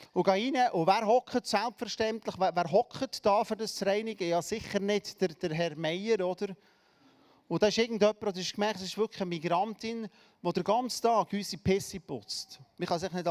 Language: German